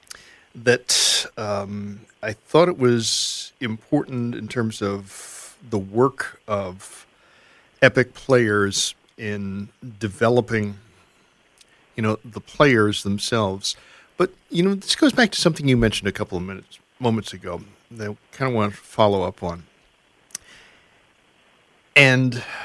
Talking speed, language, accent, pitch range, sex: 125 wpm, English, American, 100-120 Hz, male